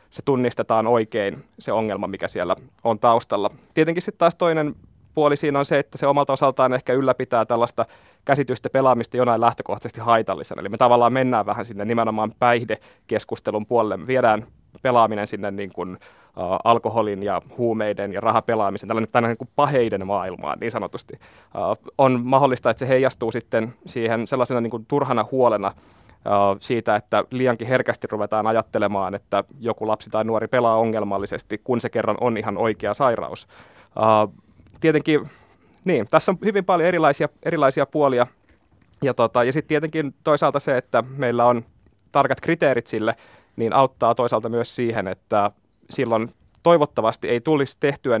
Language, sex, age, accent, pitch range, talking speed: Finnish, male, 20-39, native, 110-135 Hz, 150 wpm